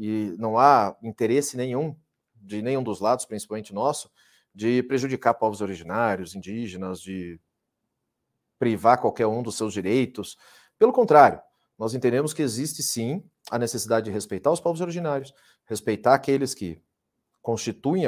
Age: 40-59